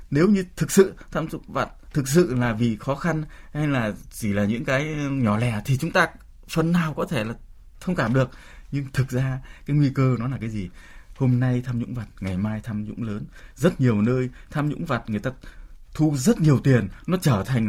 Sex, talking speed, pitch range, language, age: male, 225 wpm, 100-140 Hz, Vietnamese, 20-39